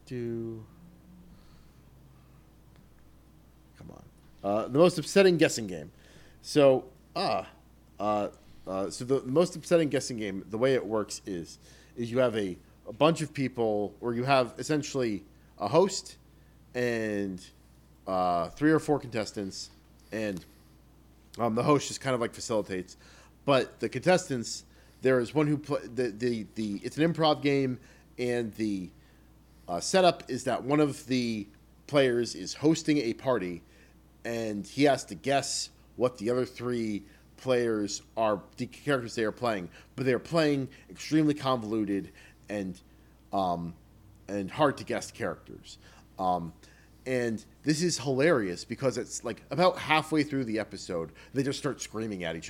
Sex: male